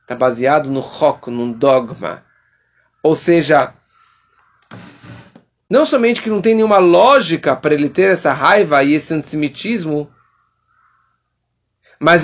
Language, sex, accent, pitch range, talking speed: English, male, Brazilian, 165-240 Hz, 120 wpm